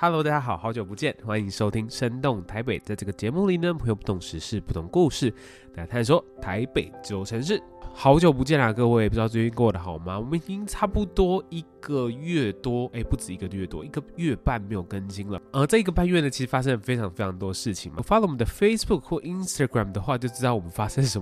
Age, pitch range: 20-39, 105-155 Hz